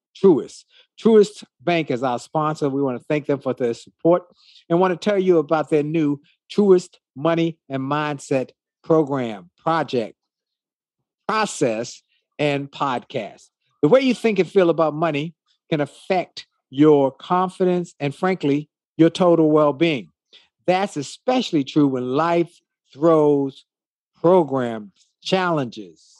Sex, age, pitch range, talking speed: male, 50-69, 135-180 Hz, 130 wpm